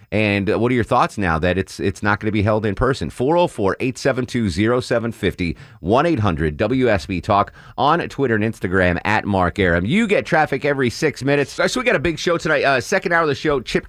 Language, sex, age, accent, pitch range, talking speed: English, male, 30-49, American, 95-120 Hz, 195 wpm